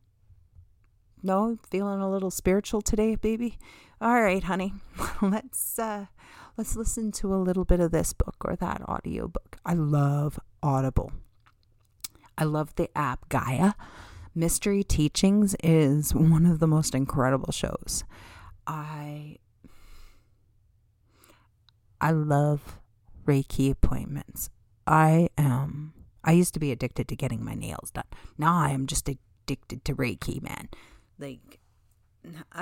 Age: 40-59